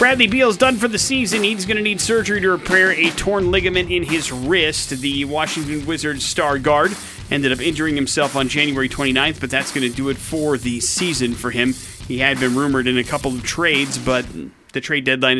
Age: 30-49